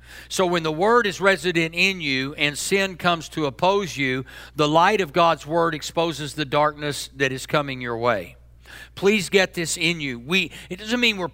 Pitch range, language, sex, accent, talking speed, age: 140-180 Hz, English, male, American, 195 wpm, 50-69